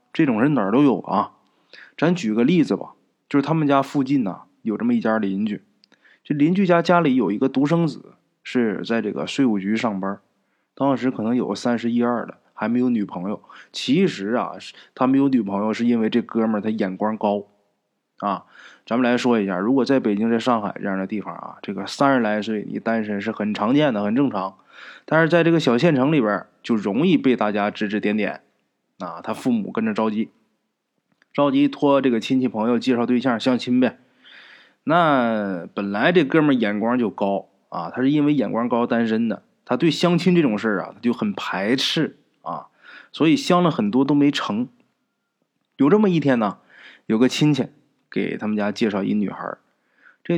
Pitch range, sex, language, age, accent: 105-145 Hz, male, Chinese, 20-39, native